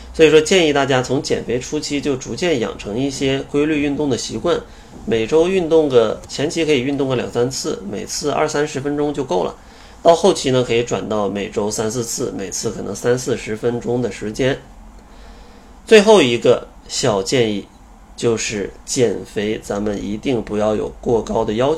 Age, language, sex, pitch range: 30-49, Chinese, male, 115-150 Hz